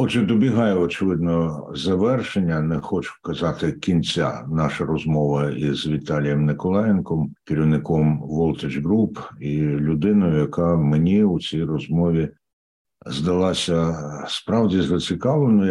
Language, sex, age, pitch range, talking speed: Ukrainian, male, 60-79, 75-95 Hz, 100 wpm